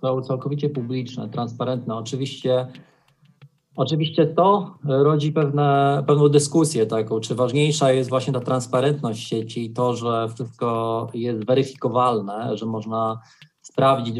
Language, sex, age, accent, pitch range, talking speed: Polish, male, 20-39, native, 120-140 Hz, 120 wpm